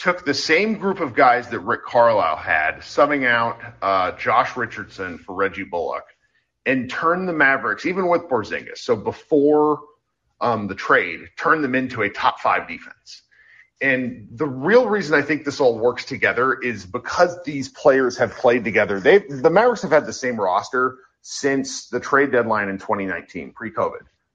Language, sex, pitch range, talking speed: English, male, 125-180 Hz, 170 wpm